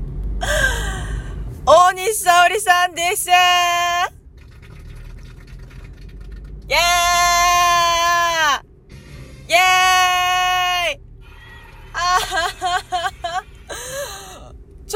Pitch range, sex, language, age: 230-340 Hz, female, Japanese, 20-39